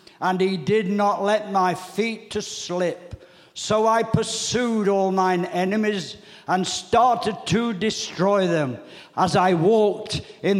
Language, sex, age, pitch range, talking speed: English, male, 60-79, 180-220 Hz, 135 wpm